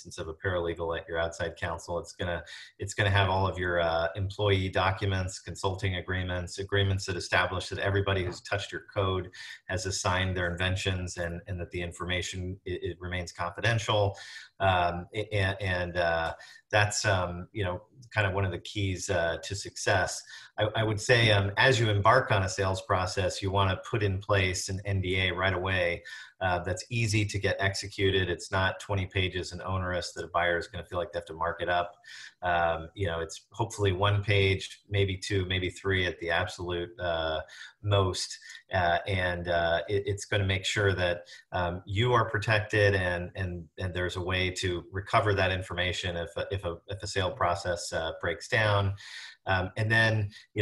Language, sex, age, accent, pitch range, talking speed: English, male, 40-59, American, 90-100 Hz, 190 wpm